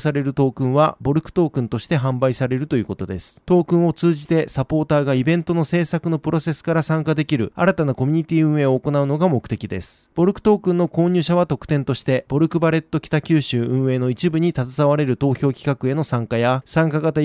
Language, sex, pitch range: Japanese, male, 135-170 Hz